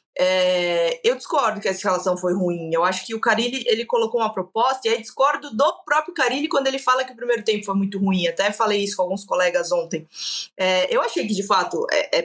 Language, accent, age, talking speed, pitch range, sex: Portuguese, Brazilian, 20-39, 235 wpm, 190-270 Hz, female